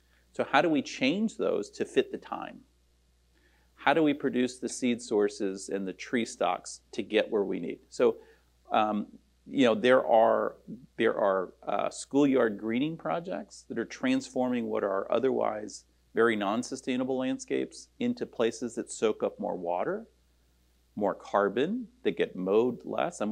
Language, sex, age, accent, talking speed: English, male, 40-59, American, 155 wpm